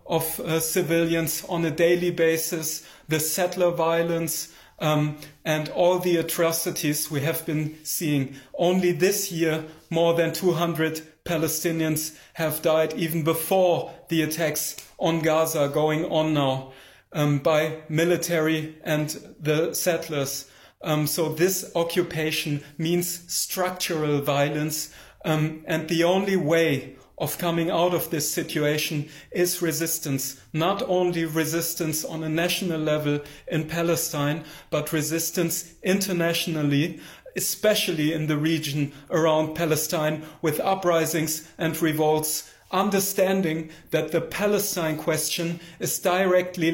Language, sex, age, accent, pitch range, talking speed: English, male, 30-49, German, 155-170 Hz, 120 wpm